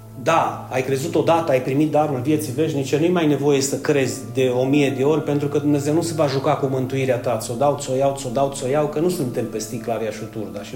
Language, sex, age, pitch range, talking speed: Romanian, male, 30-49, 120-155 Hz, 250 wpm